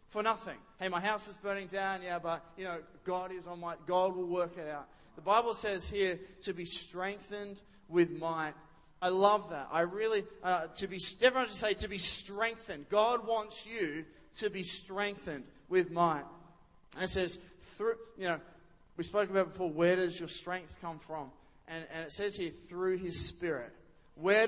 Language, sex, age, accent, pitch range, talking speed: English, male, 20-39, Australian, 180-215 Hz, 190 wpm